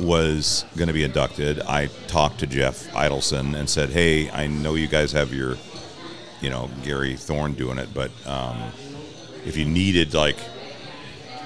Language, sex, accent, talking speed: English, male, American, 160 wpm